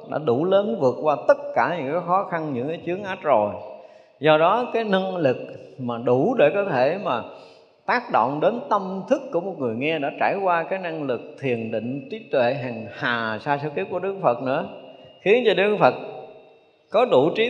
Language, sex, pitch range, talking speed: Vietnamese, male, 115-175 Hz, 215 wpm